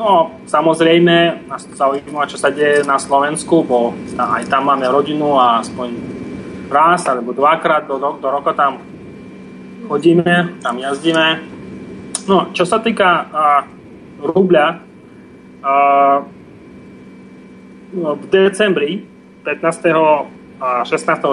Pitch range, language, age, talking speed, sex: 130-165 Hz, Slovak, 30-49, 115 wpm, male